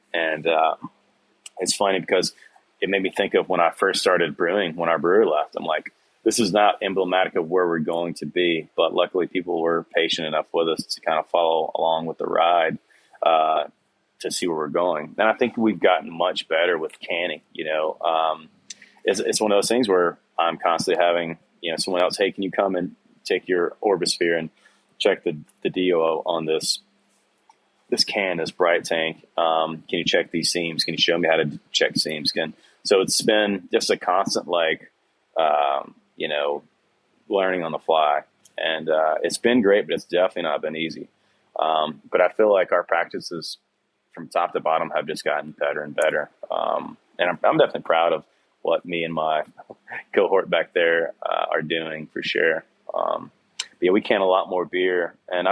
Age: 30-49